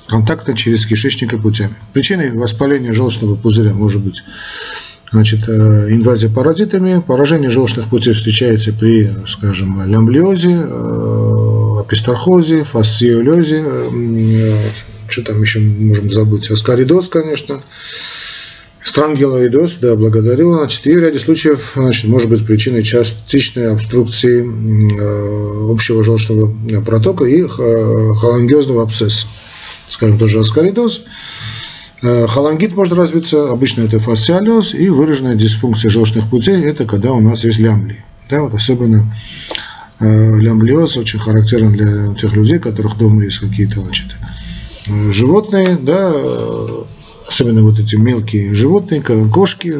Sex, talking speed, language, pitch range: male, 115 wpm, Russian, 110-140 Hz